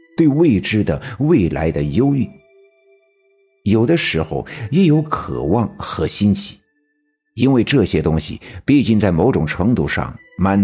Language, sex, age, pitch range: Chinese, male, 60-79, 90-145 Hz